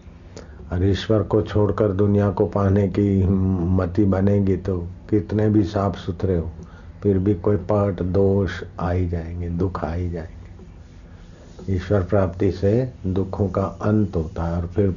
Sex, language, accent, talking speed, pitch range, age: male, Hindi, native, 150 wpm, 85-100 Hz, 50-69